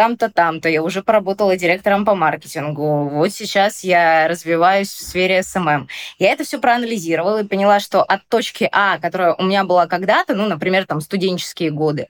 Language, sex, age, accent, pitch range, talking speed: Russian, female, 20-39, native, 180-220 Hz, 175 wpm